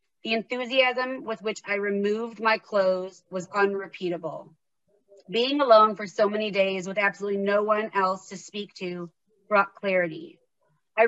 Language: English